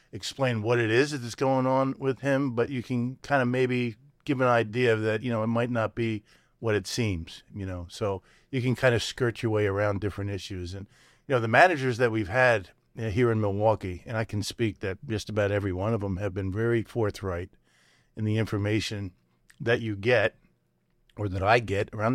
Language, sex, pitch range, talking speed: English, male, 100-125 Hz, 210 wpm